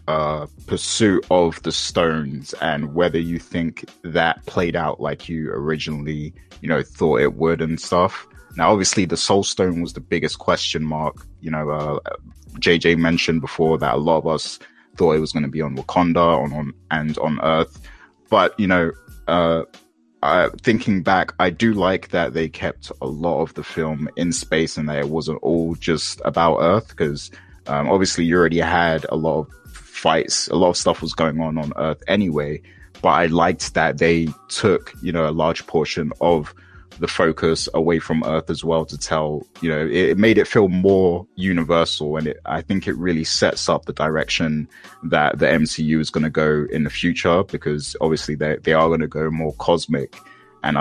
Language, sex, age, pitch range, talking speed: English, male, 20-39, 75-85 Hz, 195 wpm